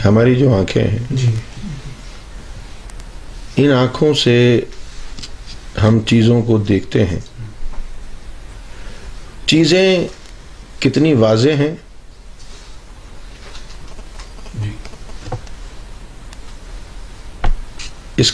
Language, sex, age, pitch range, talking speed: Urdu, male, 50-69, 105-130 Hz, 55 wpm